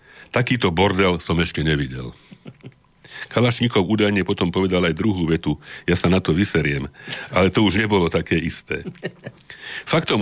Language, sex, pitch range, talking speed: Slovak, male, 85-105 Hz, 140 wpm